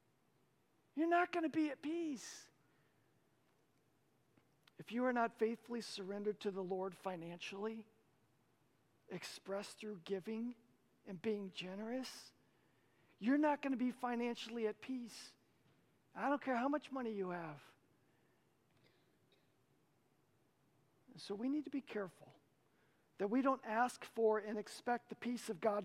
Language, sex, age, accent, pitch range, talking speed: English, male, 50-69, American, 170-240 Hz, 130 wpm